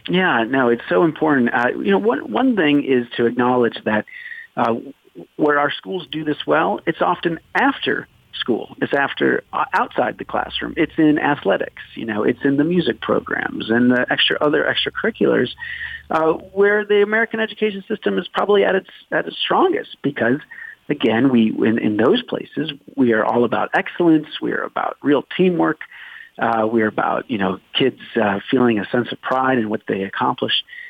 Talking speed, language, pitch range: 180 wpm, English, 120-185 Hz